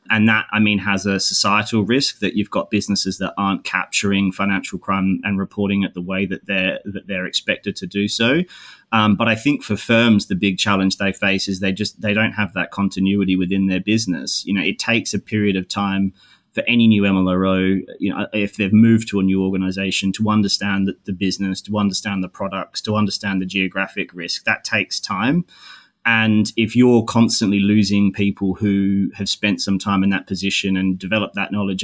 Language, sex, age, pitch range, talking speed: English, male, 20-39, 95-105 Hz, 200 wpm